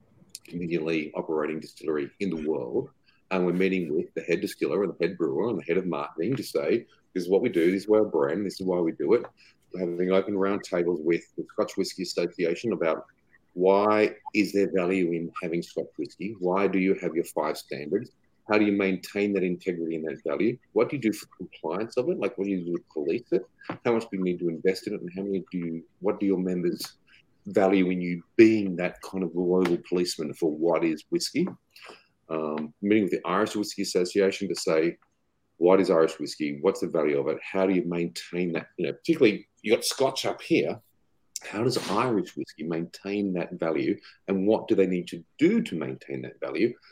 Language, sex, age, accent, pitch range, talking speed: English, male, 40-59, Australian, 85-100 Hz, 215 wpm